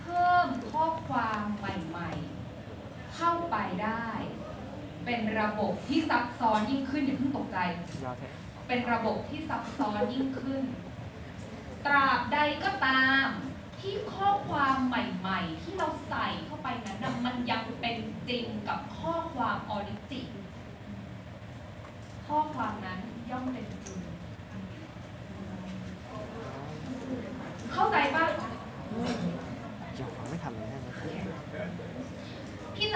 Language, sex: English, female